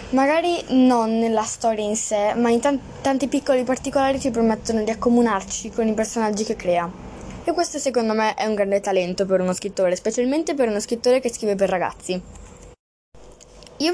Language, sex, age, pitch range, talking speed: Italian, female, 10-29, 205-260 Hz, 175 wpm